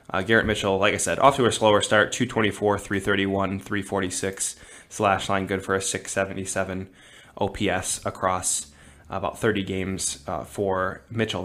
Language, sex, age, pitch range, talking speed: English, male, 20-39, 95-105 Hz, 145 wpm